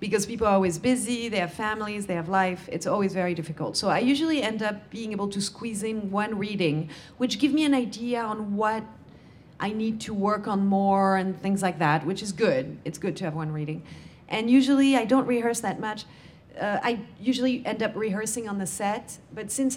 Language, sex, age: English, female, 40-59